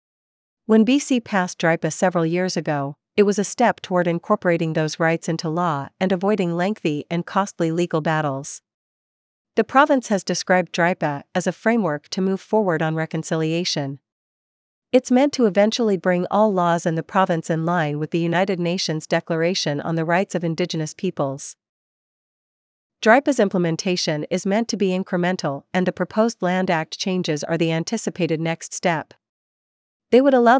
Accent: American